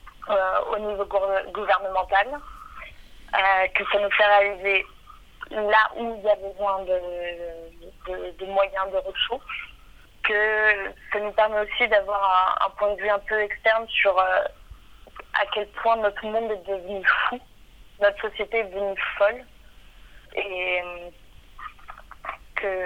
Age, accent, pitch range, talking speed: 30-49, French, 190-210 Hz, 135 wpm